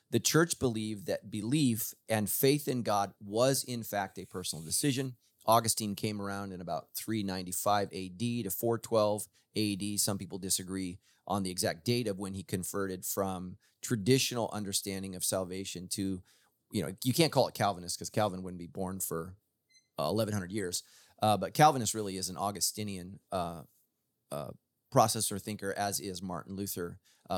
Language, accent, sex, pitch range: English, American, male, 95-115 Hz